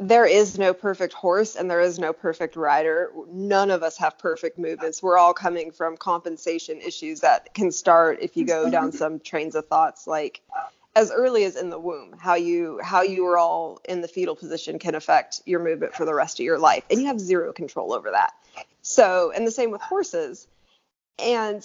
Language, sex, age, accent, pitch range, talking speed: English, female, 20-39, American, 165-215 Hz, 210 wpm